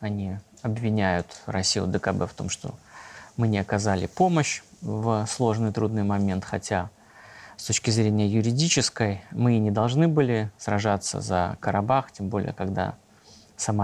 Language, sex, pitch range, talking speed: Russian, male, 105-130 Hz, 140 wpm